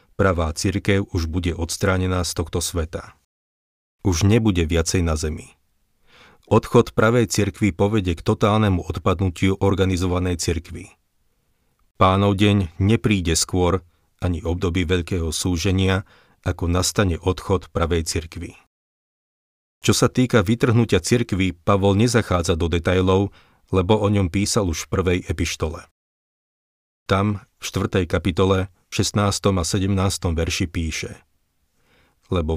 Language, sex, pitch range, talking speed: Slovak, male, 85-100 Hz, 115 wpm